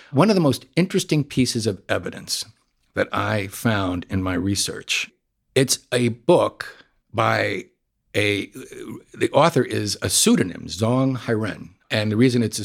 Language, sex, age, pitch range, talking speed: English, male, 60-79, 95-120 Hz, 145 wpm